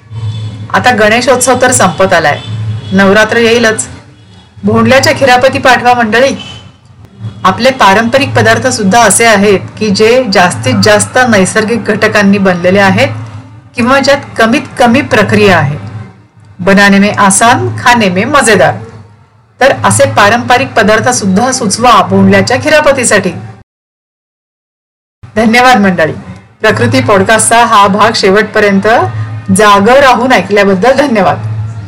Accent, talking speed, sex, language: native, 100 wpm, female, Marathi